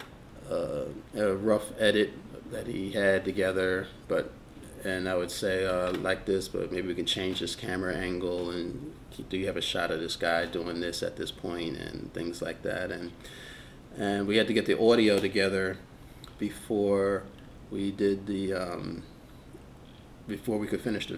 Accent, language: American, English